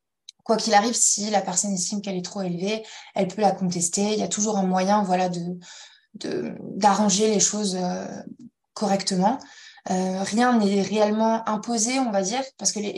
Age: 20-39